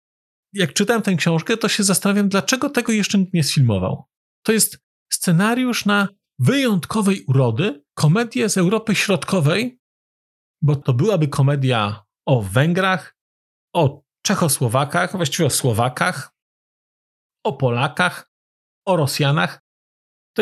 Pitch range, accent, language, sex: 140-200 Hz, native, Polish, male